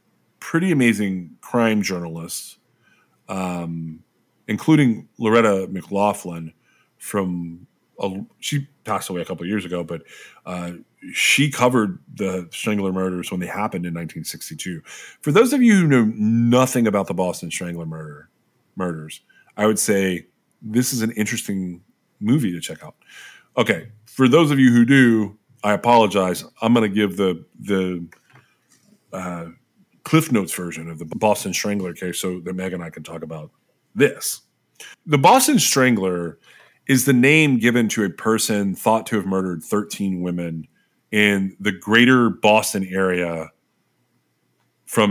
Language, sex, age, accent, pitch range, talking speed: English, male, 30-49, American, 90-115 Hz, 140 wpm